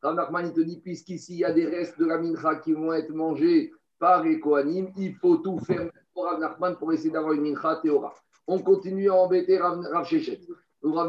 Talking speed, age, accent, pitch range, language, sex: 220 wpm, 50-69, French, 165-215 Hz, French, male